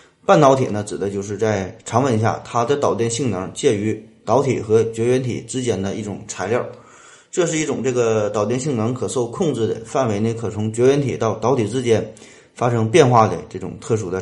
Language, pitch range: Chinese, 105-125 Hz